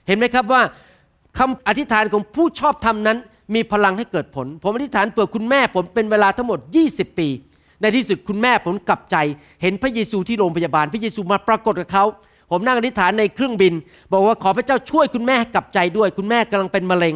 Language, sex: Thai, male